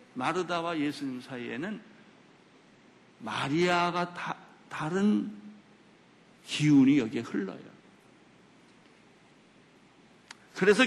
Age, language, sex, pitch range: 60-79, Korean, male, 125-175 Hz